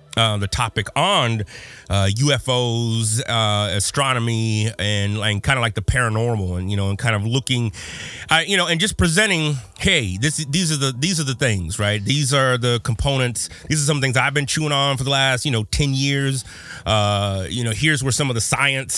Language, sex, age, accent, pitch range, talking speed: English, male, 30-49, American, 110-145 Hz, 210 wpm